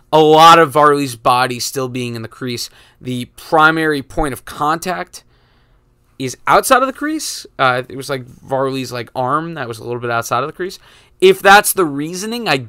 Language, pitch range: English, 125-165 Hz